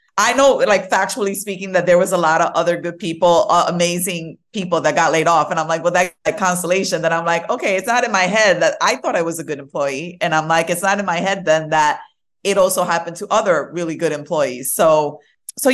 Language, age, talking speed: English, 30-49, 250 wpm